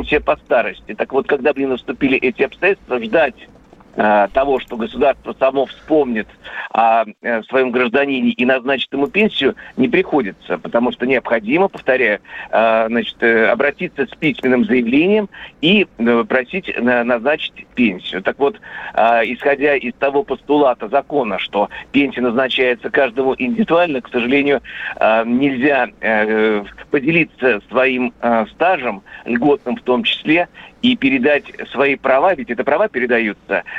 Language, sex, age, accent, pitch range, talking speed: Russian, male, 50-69, native, 120-145 Hz, 120 wpm